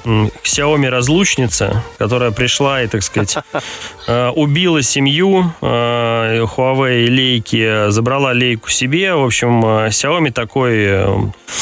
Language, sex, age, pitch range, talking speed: Russian, male, 20-39, 105-135 Hz, 95 wpm